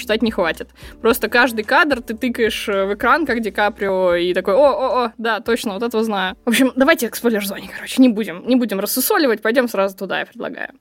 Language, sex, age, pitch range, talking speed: Russian, female, 20-39, 215-260 Hz, 200 wpm